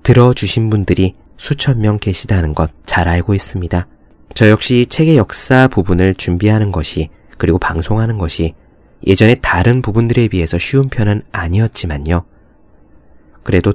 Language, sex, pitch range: Korean, male, 90-125 Hz